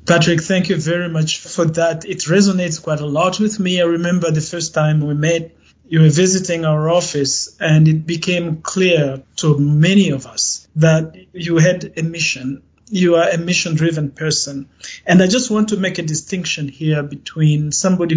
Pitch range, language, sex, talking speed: 155-175 Hz, English, male, 180 wpm